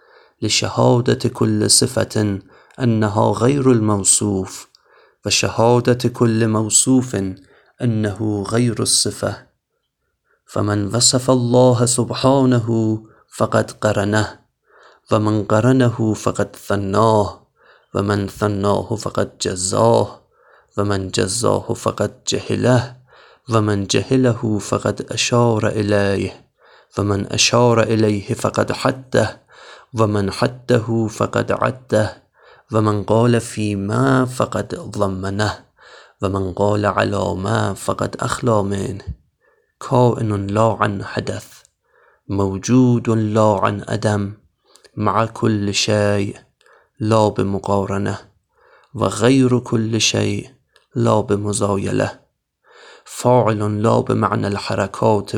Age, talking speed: 30-49, 85 wpm